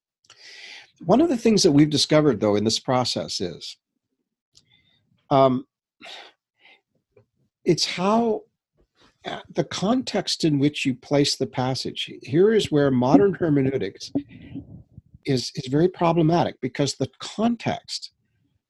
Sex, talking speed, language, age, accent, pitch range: male, 110 wpm, English, 60-79, American, 125-165 Hz